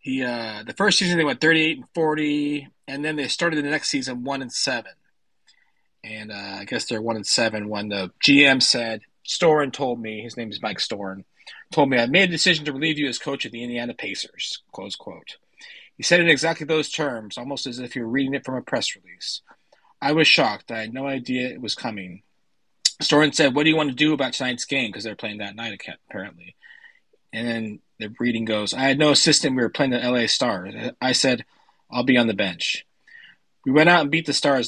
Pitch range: 115-145 Hz